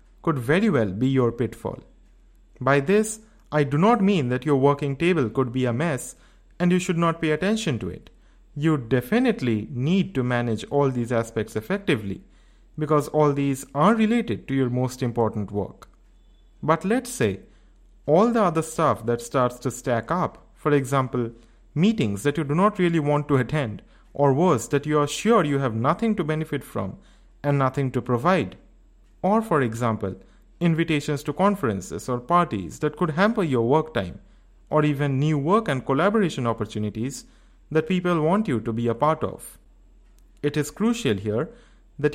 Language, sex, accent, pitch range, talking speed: English, male, Indian, 120-170 Hz, 170 wpm